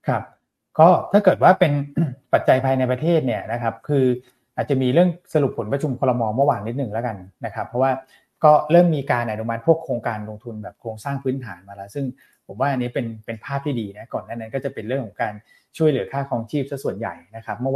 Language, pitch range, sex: Thai, 110-135 Hz, male